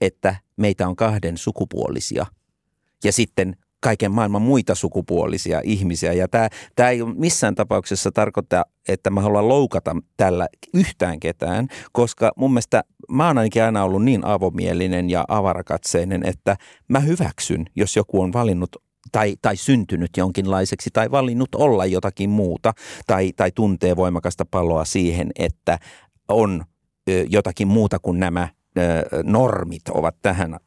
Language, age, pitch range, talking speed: Finnish, 50-69, 90-115 Hz, 135 wpm